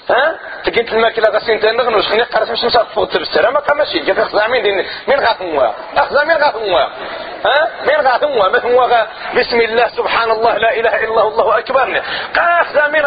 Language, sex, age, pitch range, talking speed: Arabic, male, 40-59, 215-280 Hz, 195 wpm